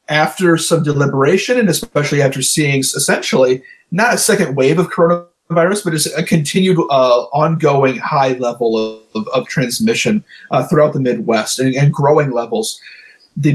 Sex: male